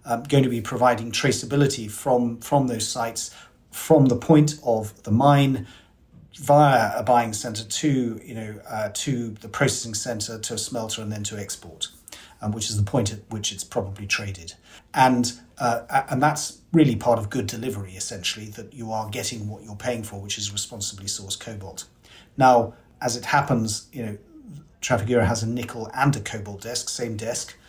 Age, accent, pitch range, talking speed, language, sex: 40-59, British, 105-125 Hz, 180 wpm, English, male